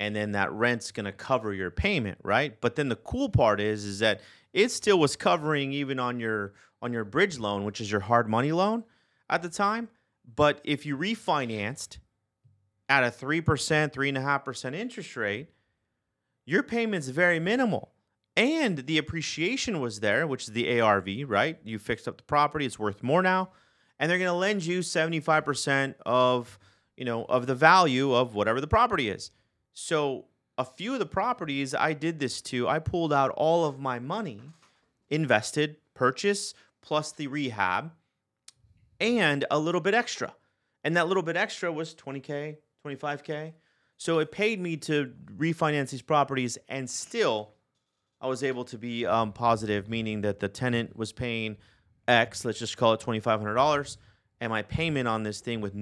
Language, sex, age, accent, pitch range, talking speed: English, male, 30-49, American, 110-160 Hz, 175 wpm